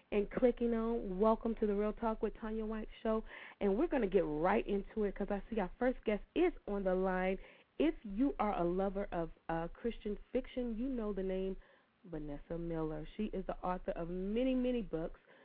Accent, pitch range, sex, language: American, 180-225 Hz, female, English